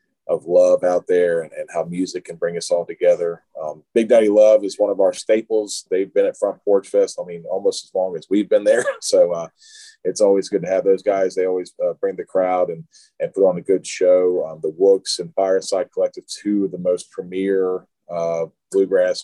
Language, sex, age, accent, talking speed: English, male, 30-49, American, 220 wpm